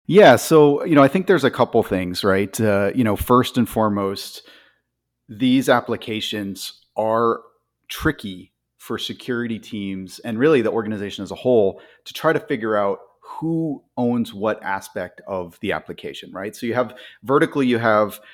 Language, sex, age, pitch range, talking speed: English, male, 30-49, 95-115 Hz, 165 wpm